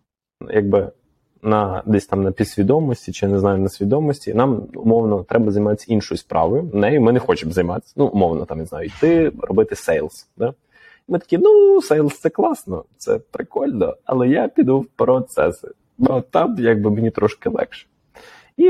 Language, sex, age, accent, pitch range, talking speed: Ukrainian, male, 20-39, native, 100-150 Hz, 165 wpm